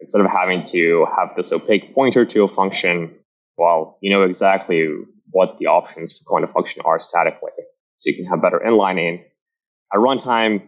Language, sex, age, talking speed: English, male, 20-39, 180 wpm